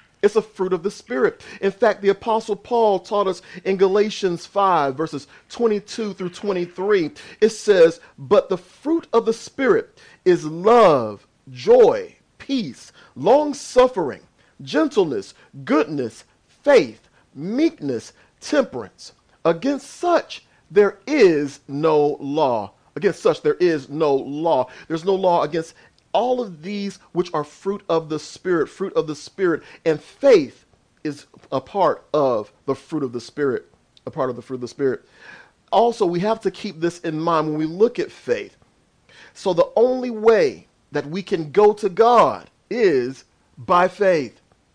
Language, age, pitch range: English, 40-59, 160-240 Hz